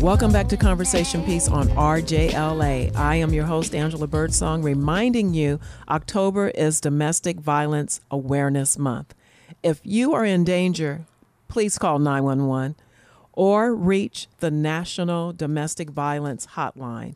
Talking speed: 125 wpm